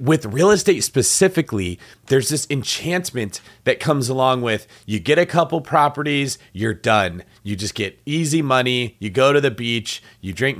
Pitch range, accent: 100-135 Hz, American